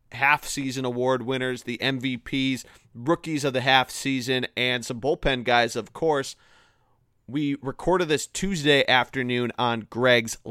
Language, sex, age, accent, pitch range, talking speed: English, male, 30-49, American, 120-145 Hz, 125 wpm